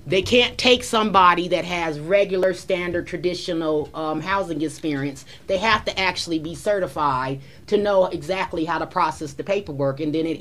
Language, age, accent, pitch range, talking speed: English, 30-49, American, 155-225 Hz, 165 wpm